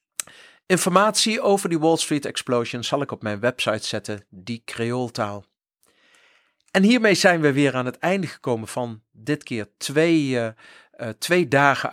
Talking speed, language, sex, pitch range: 150 wpm, Dutch, male, 115-155 Hz